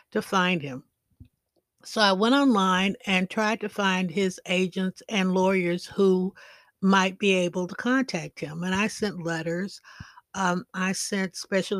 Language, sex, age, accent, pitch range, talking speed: English, female, 60-79, American, 175-215 Hz, 155 wpm